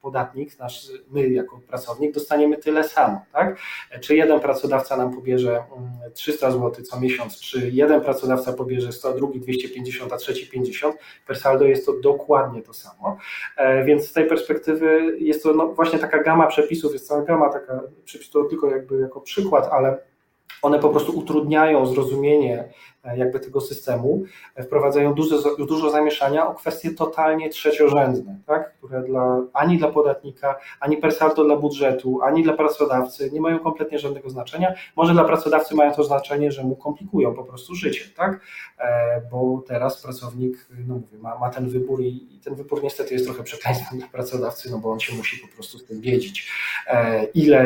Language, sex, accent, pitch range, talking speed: Polish, male, native, 125-155 Hz, 170 wpm